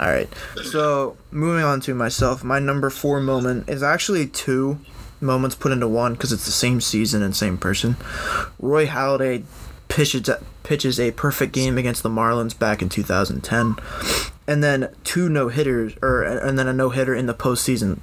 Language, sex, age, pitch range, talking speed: English, male, 20-39, 110-130 Hz, 165 wpm